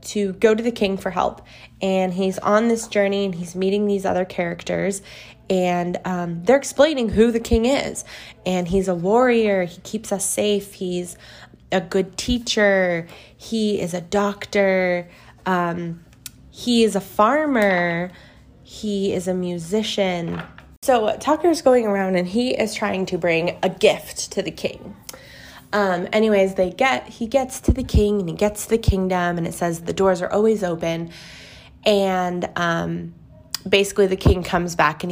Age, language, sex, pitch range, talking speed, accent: 20-39, English, female, 175-210 Hz, 165 wpm, American